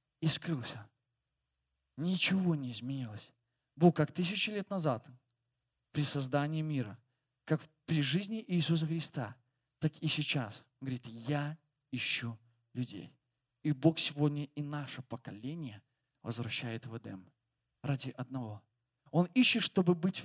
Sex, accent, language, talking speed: male, native, Russian, 120 wpm